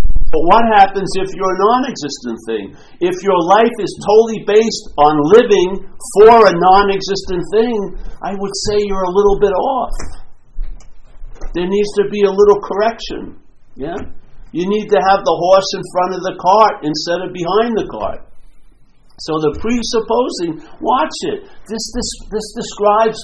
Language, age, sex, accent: English, 60-79, male, American